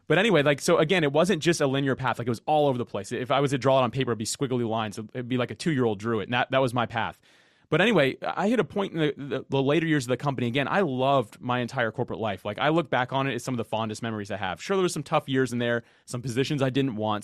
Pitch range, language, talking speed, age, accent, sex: 115-140 Hz, English, 320 wpm, 30-49, American, male